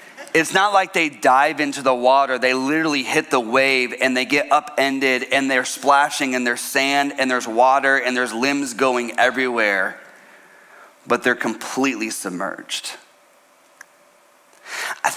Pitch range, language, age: 120-140 Hz, English, 30-49